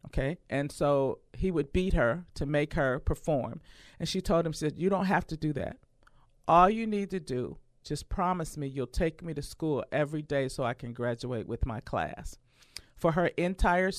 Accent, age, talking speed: American, 50-69, 205 wpm